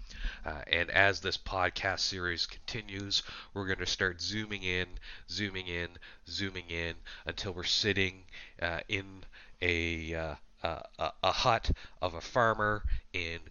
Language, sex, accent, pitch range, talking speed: English, male, American, 85-100 Hz, 140 wpm